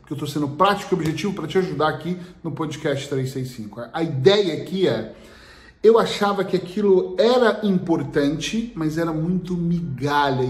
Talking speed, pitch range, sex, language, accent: 170 wpm, 140-180 Hz, male, Portuguese, Brazilian